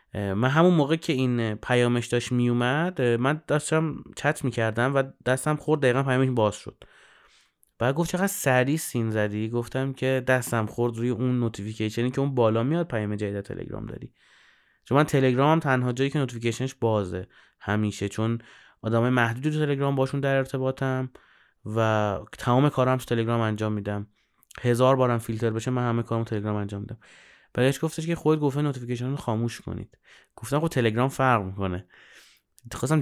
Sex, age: male, 30-49